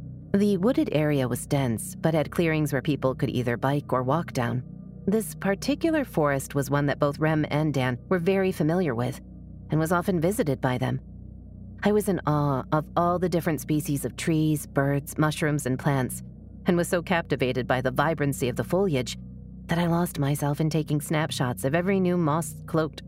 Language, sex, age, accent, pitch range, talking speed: English, female, 30-49, American, 135-170 Hz, 185 wpm